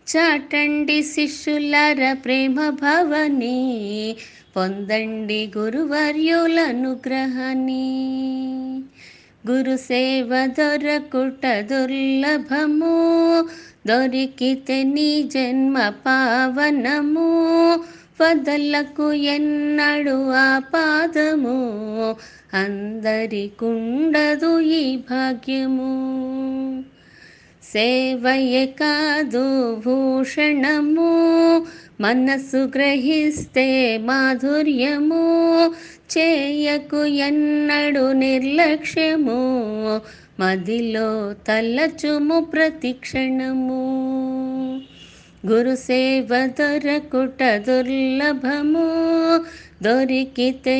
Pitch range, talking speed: 255-300 Hz, 40 wpm